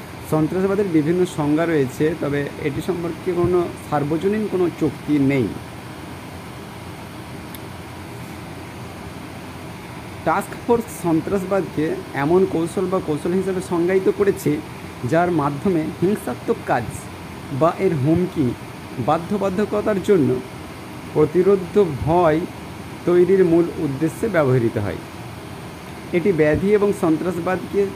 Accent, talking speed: native, 90 wpm